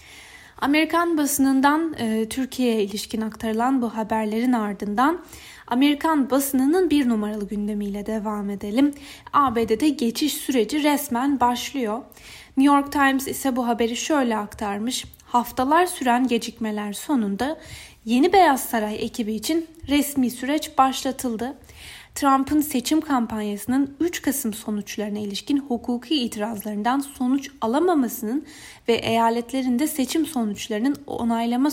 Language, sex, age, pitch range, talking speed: Turkish, female, 10-29, 220-285 Hz, 105 wpm